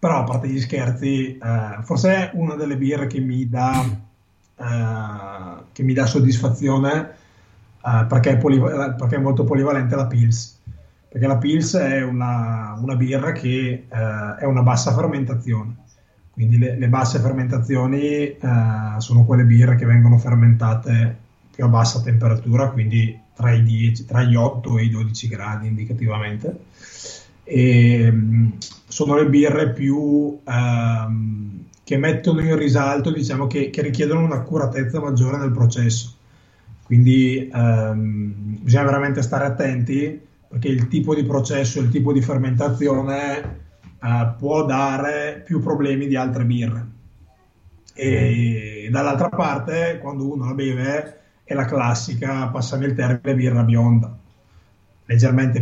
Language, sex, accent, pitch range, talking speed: Italian, male, native, 115-140 Hz, 135 wpm